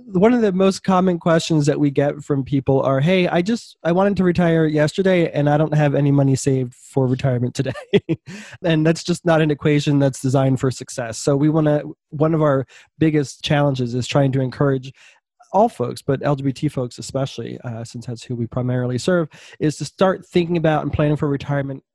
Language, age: English, 20-39